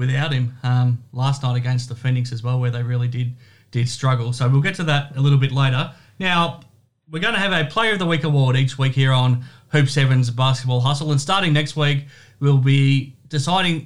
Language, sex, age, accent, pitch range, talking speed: English, male, 30-49, Australian, 130-150 Hz, 220 wpm